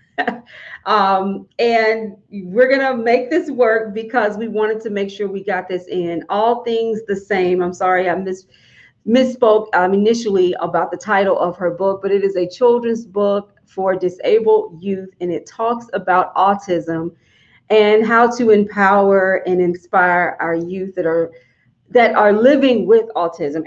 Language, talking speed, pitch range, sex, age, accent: English, 155 wpm, 180-225 Hz, female, 40-59, American